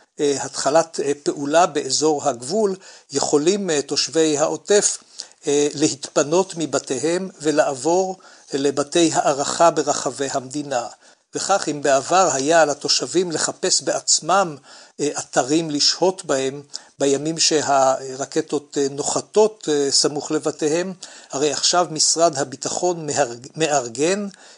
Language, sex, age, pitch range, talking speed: Hebrew, male, 60-79, 140-170 Hz, 85 wpm